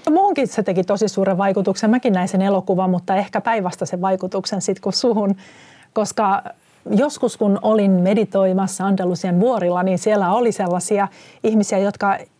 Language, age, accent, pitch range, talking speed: Finnish, 40-59, native, 185-220 Hz, 150 wpm